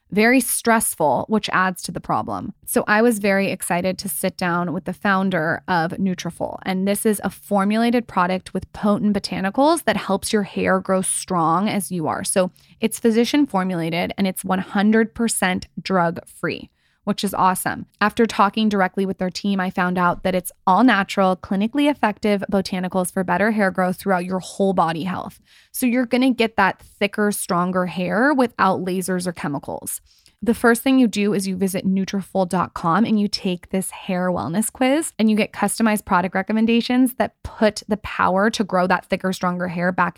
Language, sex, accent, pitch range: English, female, American, 185-215 Hz